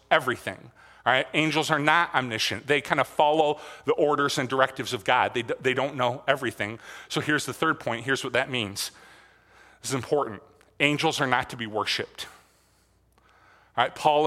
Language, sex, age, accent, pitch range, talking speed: English, male, 30-49, American, 130-155 Hz, 180 wpm